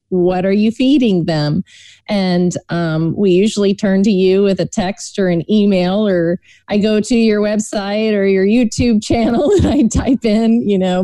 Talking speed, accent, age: 185 wpm, American, 30-49